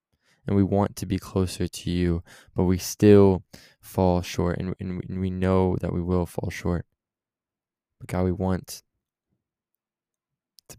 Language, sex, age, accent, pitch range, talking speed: English, male, 20-39, American, 90-100 Hz, 150 wpm